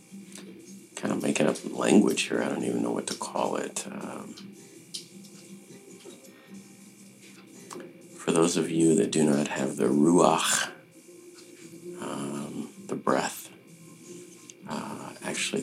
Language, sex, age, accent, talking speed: English, male, 50-69, American, 115 wpm